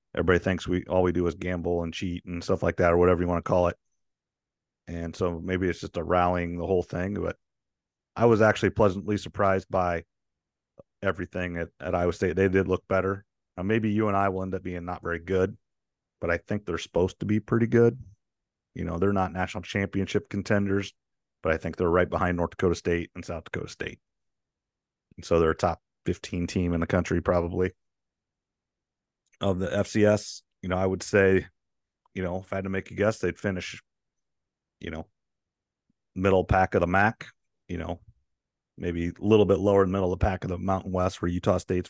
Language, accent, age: English, American, 40-59